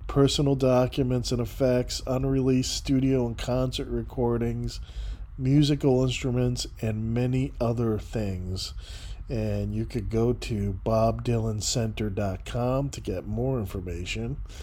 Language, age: English, 40-59